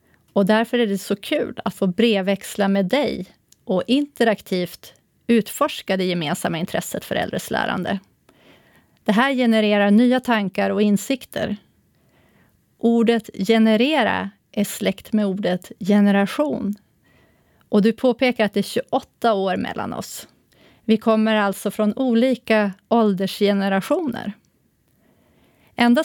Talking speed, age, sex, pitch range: 115 wpm, 30-49, female, 200-235 Hz